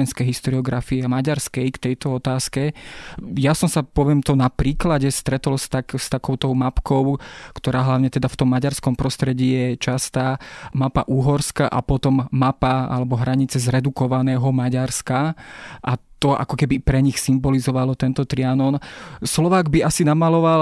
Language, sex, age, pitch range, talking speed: Slovak, male, 20-39, 130-145 Hz, 145 wpm